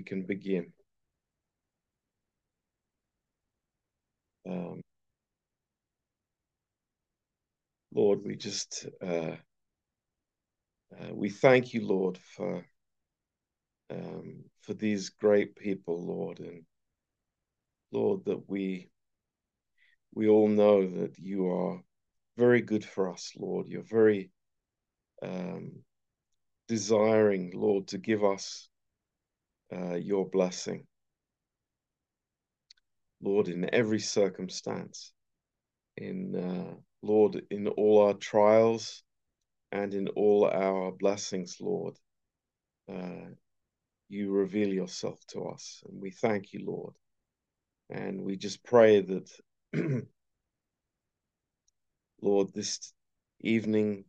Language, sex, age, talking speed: Romanian, male, 50-69, 90 wpm